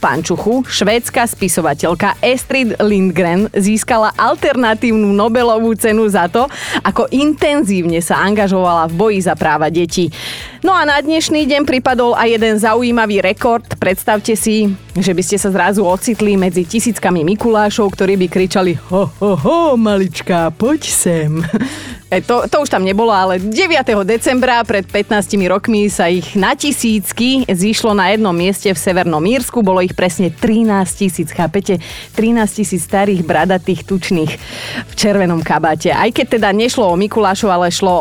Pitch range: 180-235 Hz